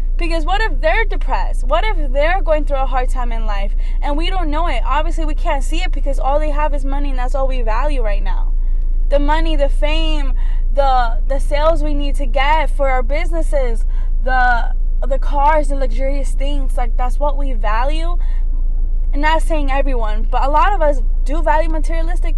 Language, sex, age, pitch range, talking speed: English, female, 10-29, 265-330 Hz, 200 wpm